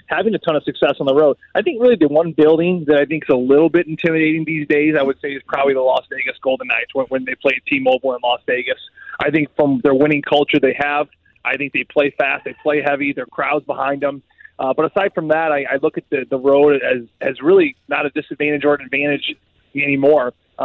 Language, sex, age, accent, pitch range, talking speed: English, male, 20-39, American, 140-170 Hz, 245 wpm